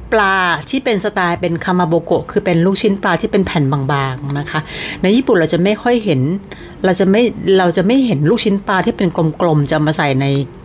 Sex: female